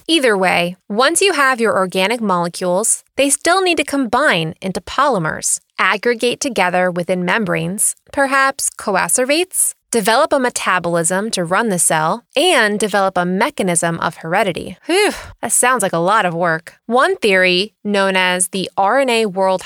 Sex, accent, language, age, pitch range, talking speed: female, American, English, 20-39, 180-265 Hz, 145 wpm